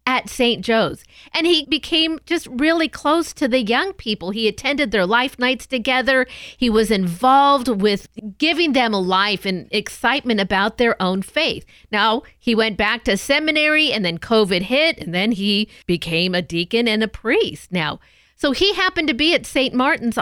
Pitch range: 190-260 Hz